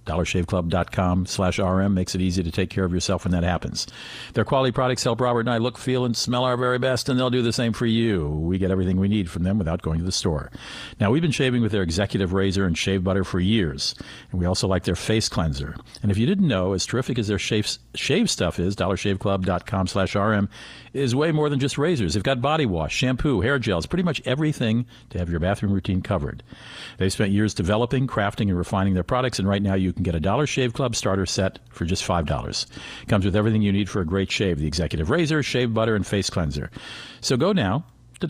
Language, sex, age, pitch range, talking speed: English, male, 50-69, 90-120 Hz, 235 wpm